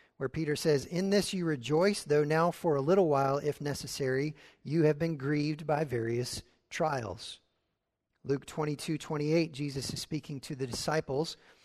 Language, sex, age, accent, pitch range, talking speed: English, male, 40-59, American, 125-155 Hz, 160 wpm